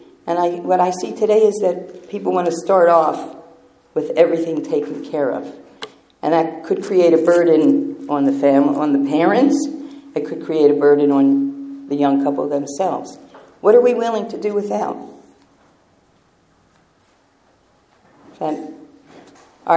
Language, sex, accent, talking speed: English, female, American, 145 wpm